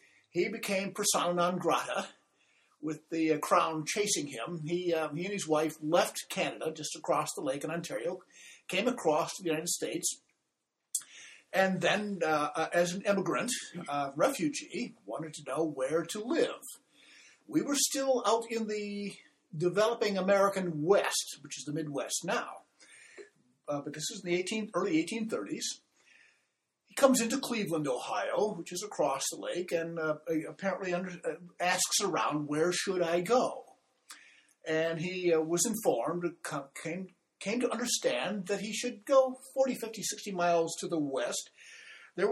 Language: English